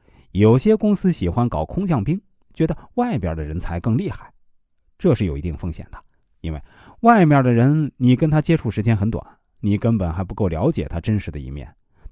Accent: native